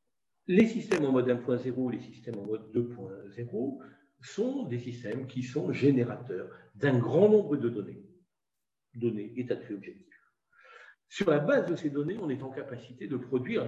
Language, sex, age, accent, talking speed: French, male, 50-69, French, 170 wpm